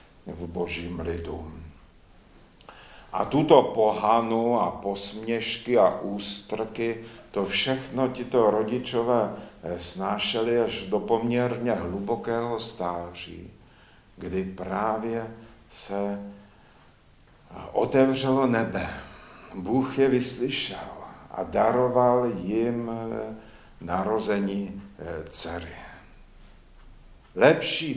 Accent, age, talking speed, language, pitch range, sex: native, 50-69, 75 wpm, Czech, 95-125 Hz, male